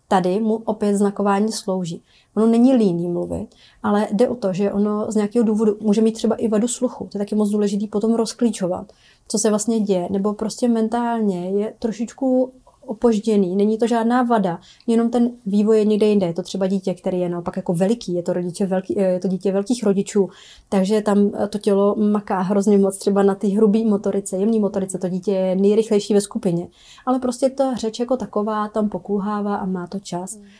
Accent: native